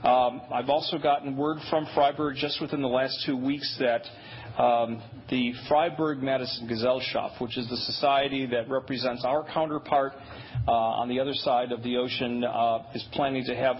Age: 40-59